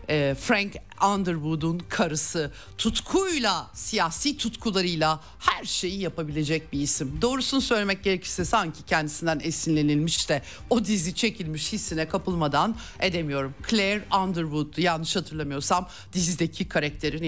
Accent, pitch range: native, 150-230 Hz